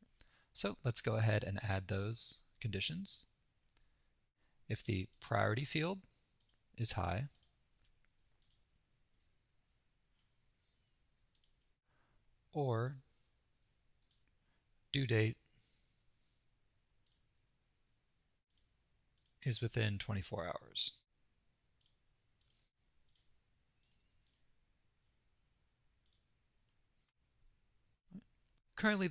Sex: male